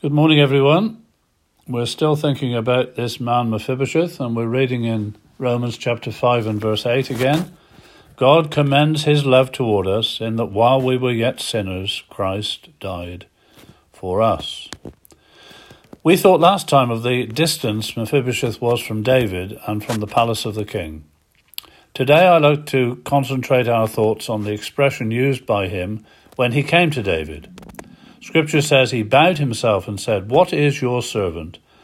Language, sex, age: English, male, 50-69